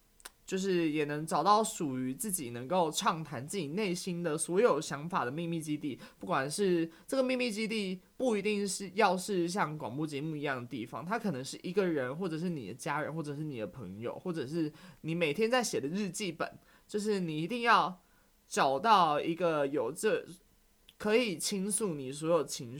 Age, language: 20-39, Chinese